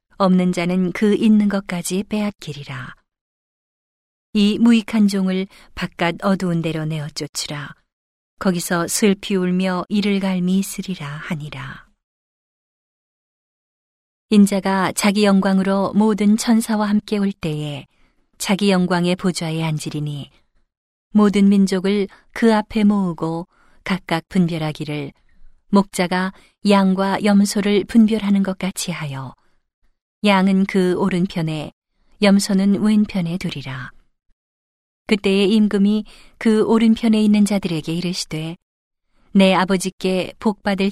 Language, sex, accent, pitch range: Korean, female, native, 170-200 Hz